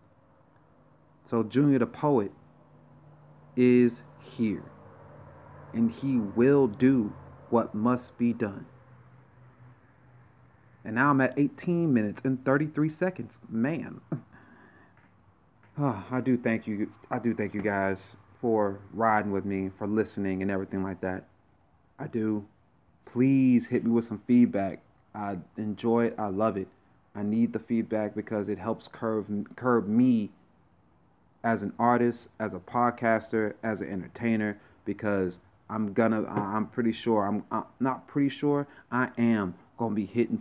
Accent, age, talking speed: American, 30-49, 140 wpm